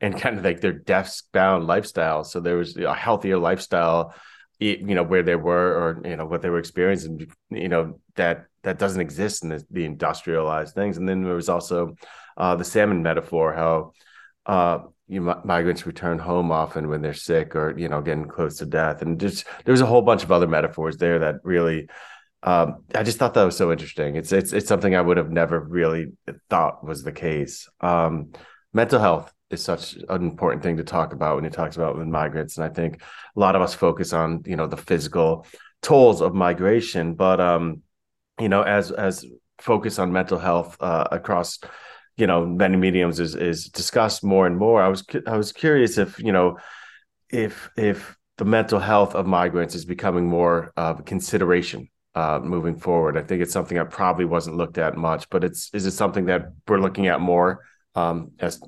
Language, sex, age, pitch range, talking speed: English, male, 30-49, 80-90 Hz, 205 wpm